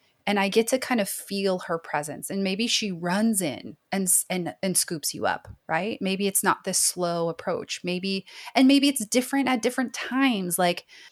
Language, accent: English, American